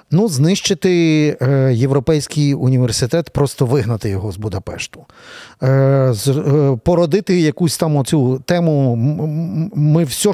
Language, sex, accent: Ukrainian, male, native